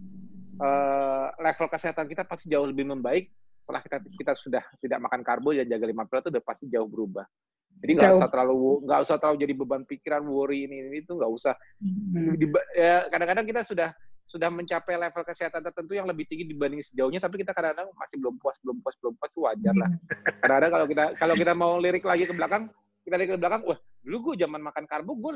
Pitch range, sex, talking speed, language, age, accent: 135-185 Hz, male, 205 wpm, Indonesian, 30-49, native